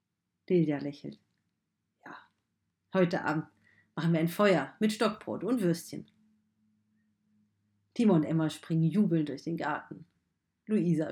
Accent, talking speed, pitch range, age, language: German, 120 wpm, 145-180 Hz, 40-59, German